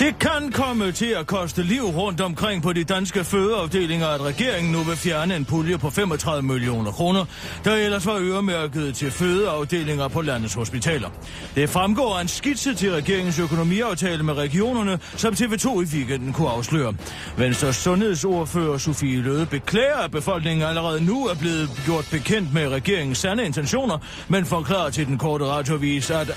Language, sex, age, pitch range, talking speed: Danish, male, 40-59, 140-190 Hz, 165 wpm